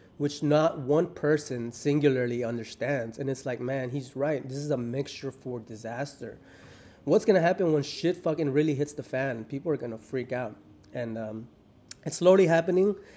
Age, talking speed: 20-39, 175 wpm